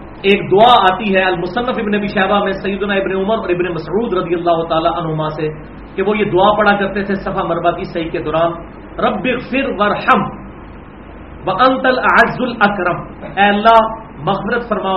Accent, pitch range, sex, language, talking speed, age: Indian, 170-220 Hz, male, English, 140 wpm, 40-59